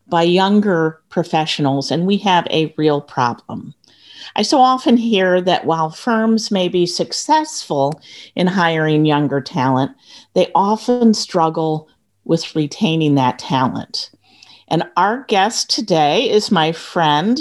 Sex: female